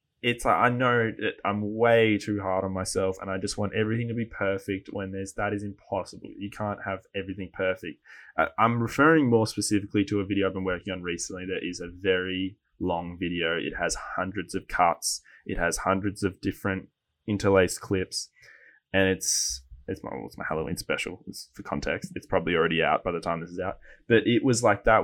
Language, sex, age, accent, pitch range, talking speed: English, male, 20-39, Australian, 95-110 Hz, 205 wpm